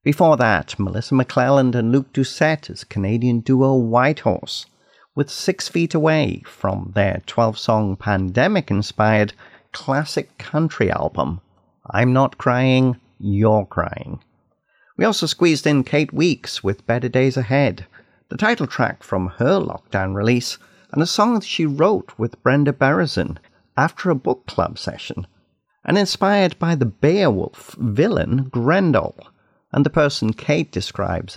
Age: 50-69